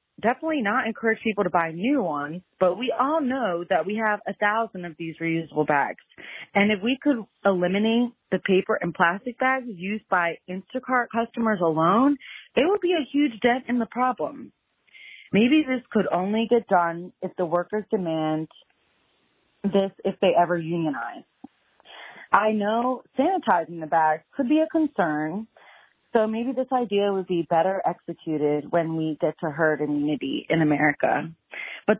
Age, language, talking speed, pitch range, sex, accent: 30-49, English, 160 wpm, 170-245 Hz, female, American